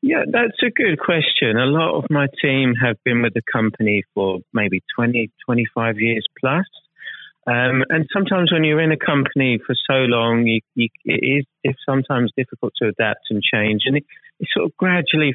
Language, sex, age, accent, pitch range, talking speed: English, male, 30-49, British, 110-140 Hz, 170 wpm